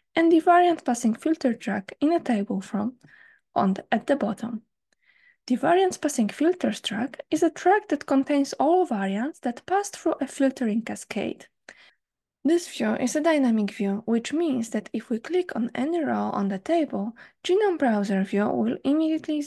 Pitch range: 230-320 Hz